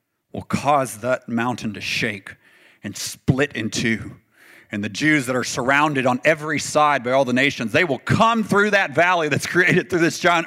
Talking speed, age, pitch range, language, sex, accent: 195 wpm, 40-59, 155-235 Hz, English, male, American